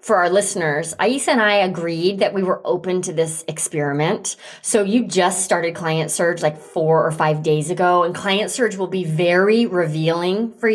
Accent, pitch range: American, 165-225 Hz